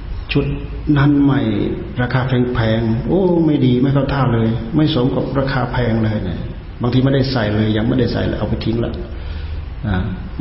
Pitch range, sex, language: 95-120 Hz, male, Thai